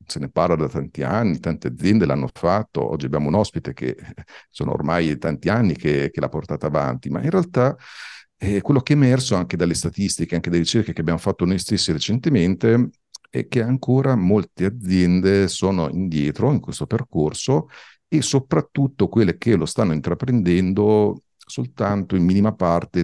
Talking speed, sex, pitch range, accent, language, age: 170 wpm, male, 80-115 Hz, native, Italian, 50-69